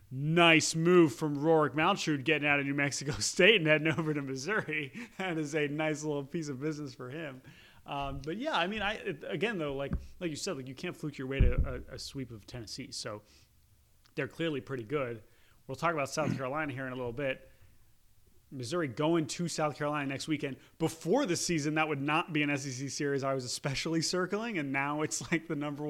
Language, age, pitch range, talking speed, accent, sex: English, 30-49, 125-155 Hz, 215 wpm, American, male